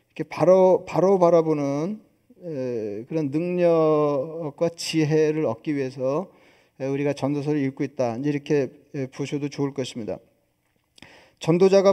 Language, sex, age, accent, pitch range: Korean, male, 40-59, native, 150-190 Hz